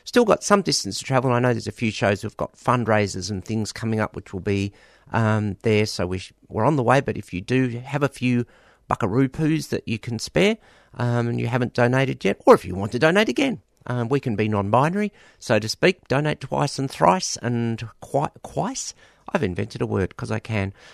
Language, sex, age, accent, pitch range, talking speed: English, male, 50-69, Australian, 105-135 Hz, 220 wpm